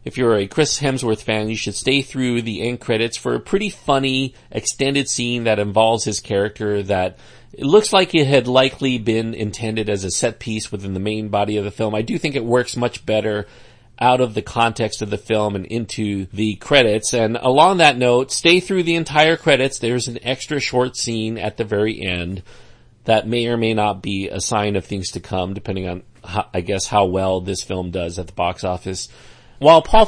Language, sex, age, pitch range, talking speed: English, male, 40-59, 105-130 Hz, 210 wpm